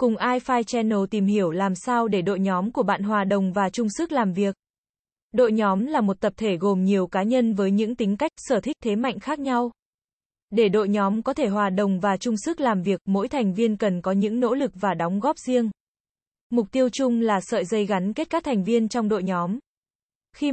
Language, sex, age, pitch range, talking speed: Vietnamese, female, 20-39, 200-245 Hz, 230 wpm